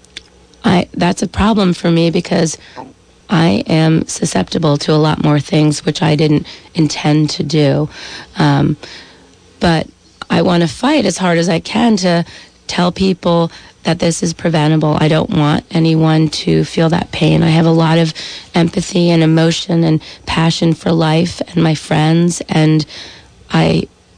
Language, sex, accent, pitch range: English, female, American, 155-180 Hz